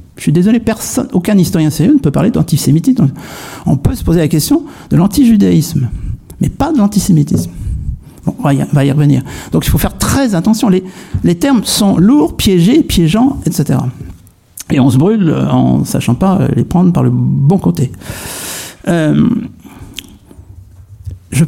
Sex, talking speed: male, 160 wpm